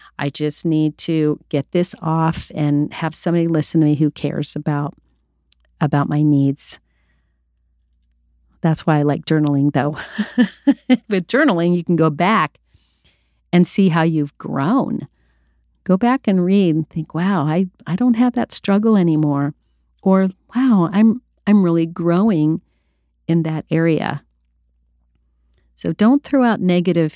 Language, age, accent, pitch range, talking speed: English, 50-69, American, 135-180 Hz, 140 wpm